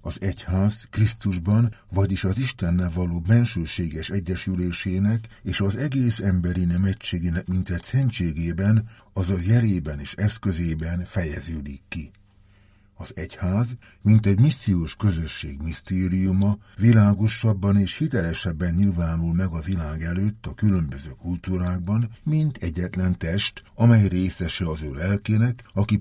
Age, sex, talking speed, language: 60-79, male, 120 wpm, Hungarian